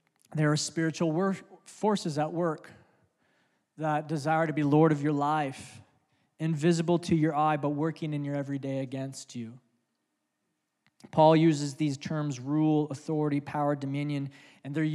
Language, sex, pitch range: English, male, 145-165 Hz